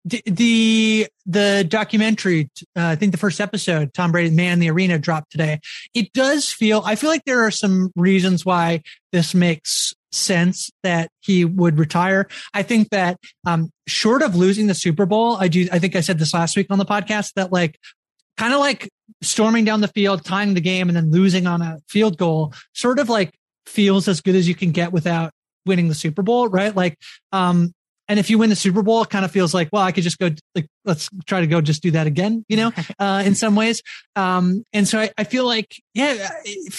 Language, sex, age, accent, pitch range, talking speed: English, male, 30-49, American, 175-215 Hz, 220 wpm